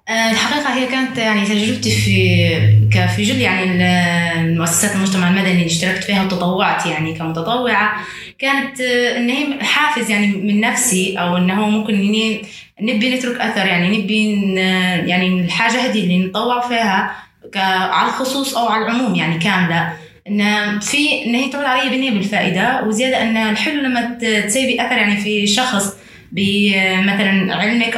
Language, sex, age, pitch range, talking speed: Arabic, female, 20-39, 190-240 Hz, 135 wpm